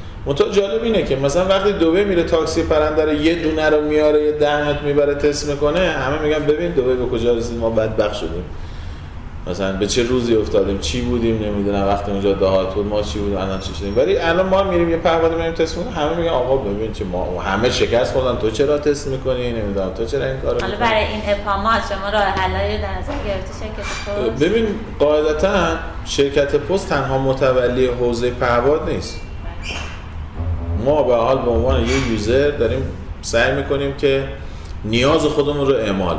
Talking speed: 170 wpm